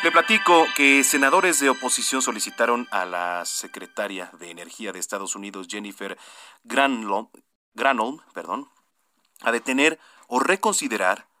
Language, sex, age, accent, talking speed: Spanish, male, 40-59, Mexican, 110 wpm